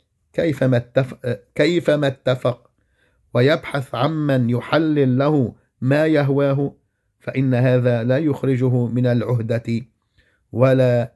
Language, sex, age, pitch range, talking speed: English, male, 50-69, 120-145 Hz, 85 wpm